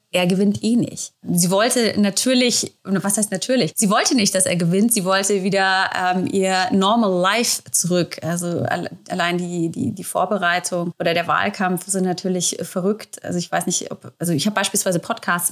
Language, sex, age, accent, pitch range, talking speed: German, female, 30-49, German, 185-220 Hz, 180 wpm